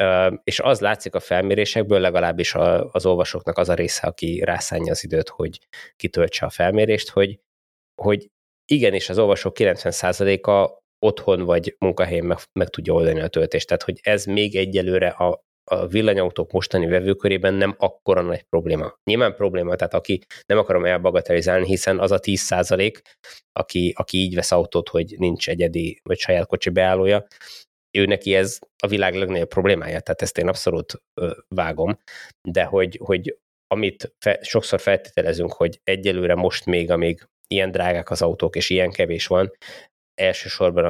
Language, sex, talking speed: Hungarian, male, 155 wpm